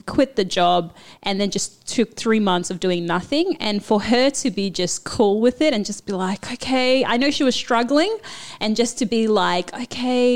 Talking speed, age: 215 wpm, 30-49